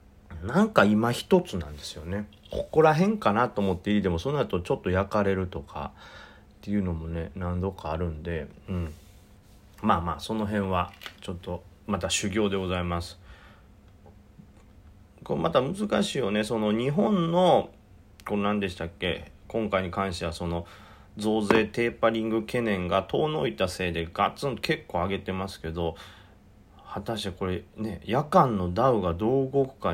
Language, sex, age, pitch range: Japanese, male, 40-59, 90-115 Hz